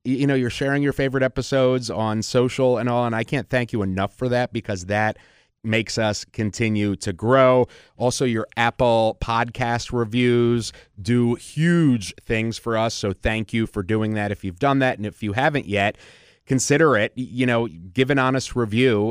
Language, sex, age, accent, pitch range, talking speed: English, male, 30-49, American, 100-125 Hz, 185 wpm